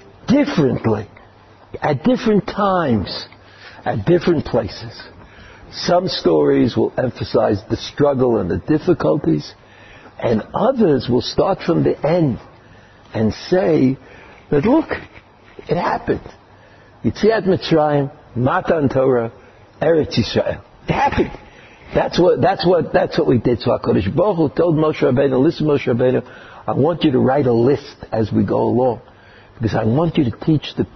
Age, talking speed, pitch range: 60-79, 120 wpm, 110-150 Hz